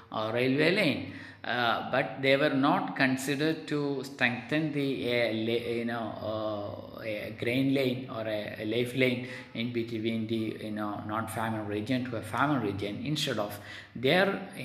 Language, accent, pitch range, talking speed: Malayalam, native, 110-135 Hz, 160 wpm